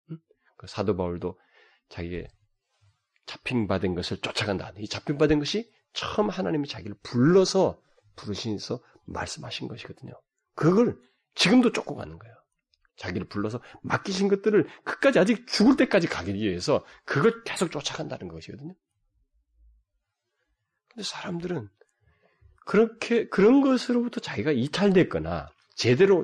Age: 40-59